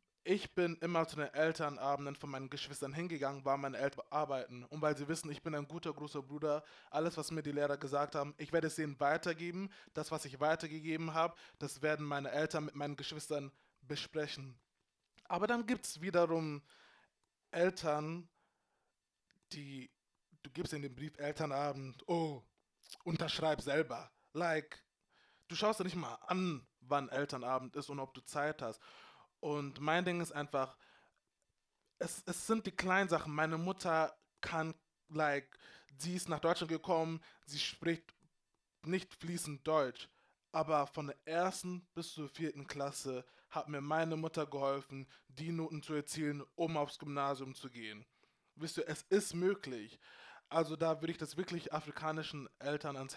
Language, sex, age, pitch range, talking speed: German, male, 20-39, 145-165 Hz, 160 wpm